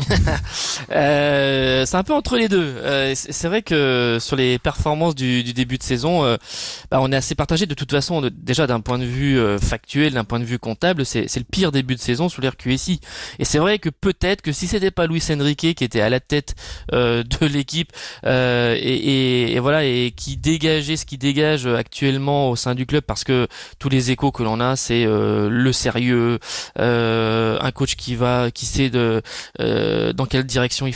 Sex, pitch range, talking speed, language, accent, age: male, 125-155 Hz, 205 wpm, French, French, 20-39